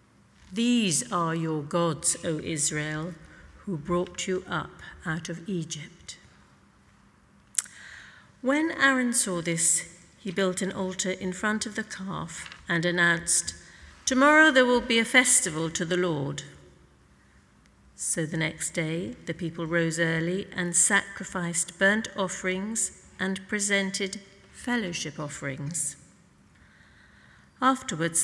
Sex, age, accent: female, 50-69, British